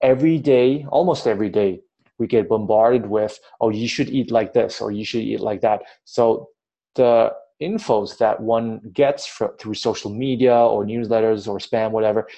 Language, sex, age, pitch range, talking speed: English, male, 20-39, 105-135 Hz, 170 wpm